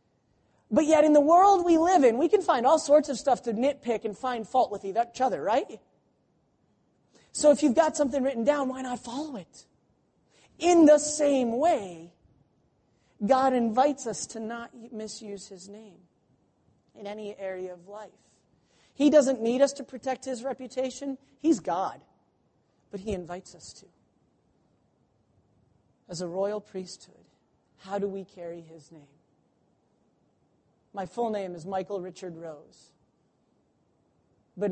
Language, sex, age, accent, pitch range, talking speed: English, male, 40-59, American, 175-265 Hz, 145 wpm